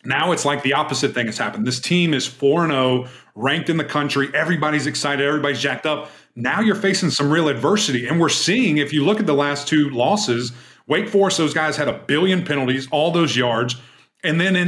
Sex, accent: male, American